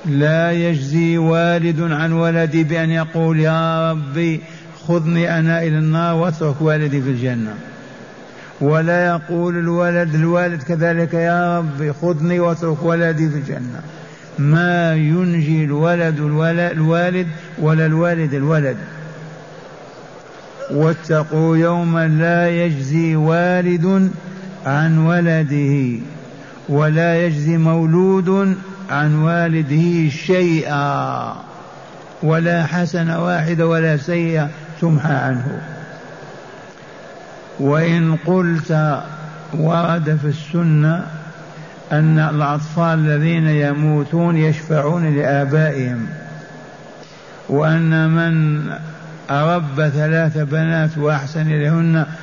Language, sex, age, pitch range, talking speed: Arabic, male, 50-69, 155-170 Hz, 85 wpm